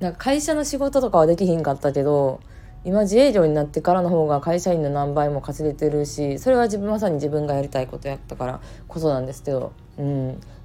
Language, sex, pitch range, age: Japanese, female, 140-205 Hz, 20-39